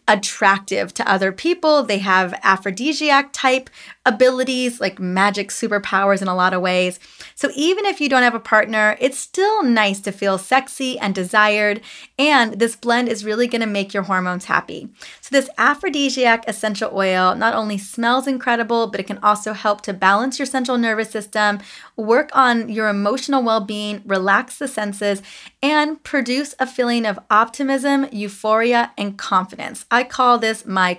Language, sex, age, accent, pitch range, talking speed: English, female, 20-39, American, 200-255 Hz, 165 wpm